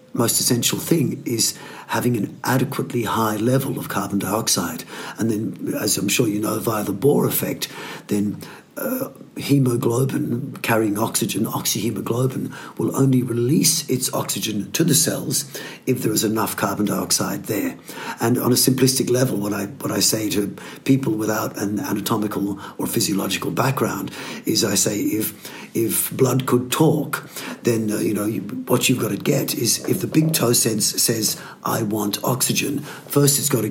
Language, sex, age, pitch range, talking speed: English, male, 50-69, 110-145 Hz, 165 wpm